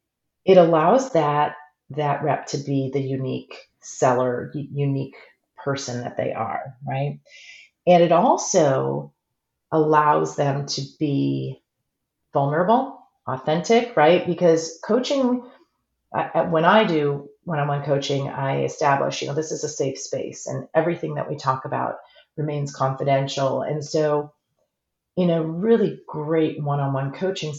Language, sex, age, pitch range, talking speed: English, female, 40-59, 135-170 Hz, 130 wpm